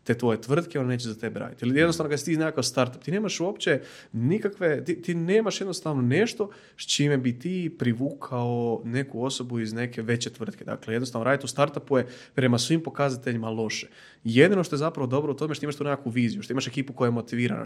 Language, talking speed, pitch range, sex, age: Croatian, 210 wpm, 120-145 Hz, male, 20-39